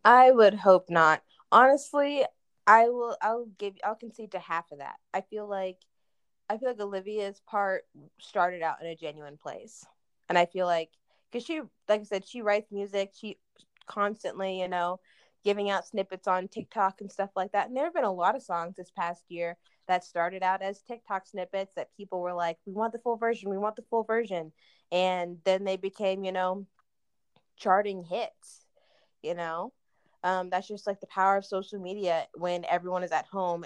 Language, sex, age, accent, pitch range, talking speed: English, female, 20-39, American, 175-205 Hz, 195 wpm